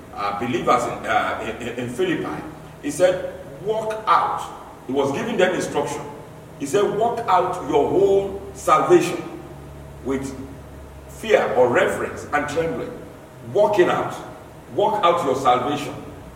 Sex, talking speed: male, 120 wpm